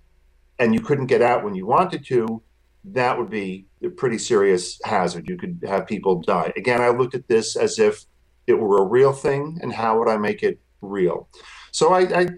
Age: 40-59